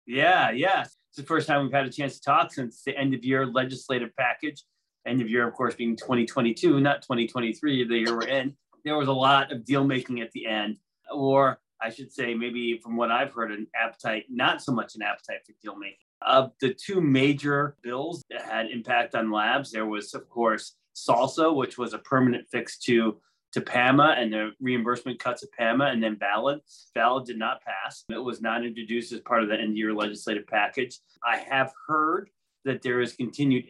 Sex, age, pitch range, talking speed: male, 30-49, 115-135 Hz, 205 wpm